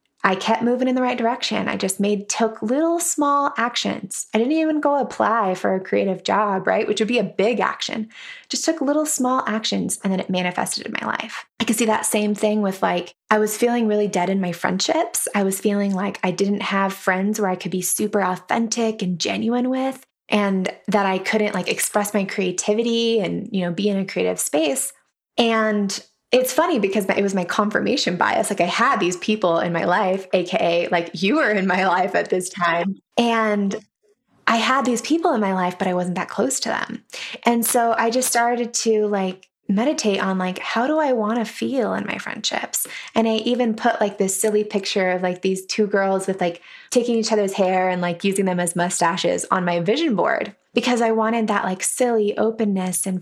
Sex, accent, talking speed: female, American, 215 wpm